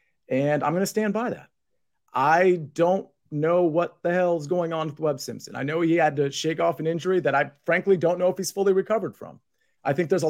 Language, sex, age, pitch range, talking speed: English, male, 30-49, 140-185 Hz, 240 wpm